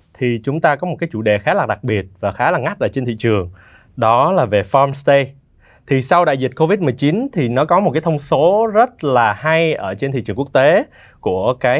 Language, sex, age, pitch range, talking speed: Vietnamese, male, 20-39, 115-145 Hz, 245 wpm